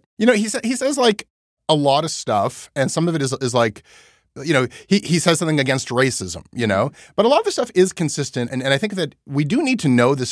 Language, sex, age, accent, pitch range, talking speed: English, male, 30-49, American, 100-130 Hz, 275 wpm